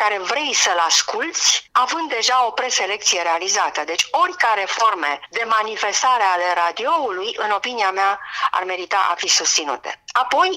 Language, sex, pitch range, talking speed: English, female, 175-225 Hz, 150 wpm